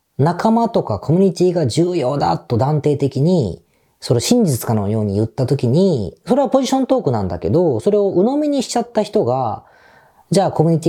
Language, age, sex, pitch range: Japanese, 40-59, female, 120-200 Hz